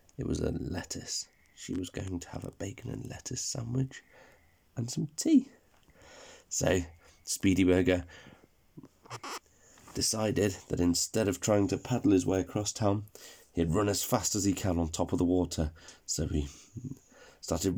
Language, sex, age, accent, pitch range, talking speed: English, male, 30-49, British, 95-130 Hz, 155 wpm